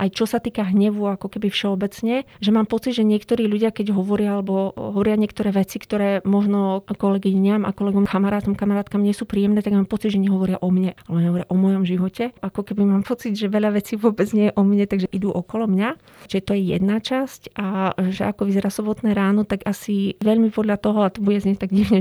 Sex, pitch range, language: female, 185-205 Hz, Slovak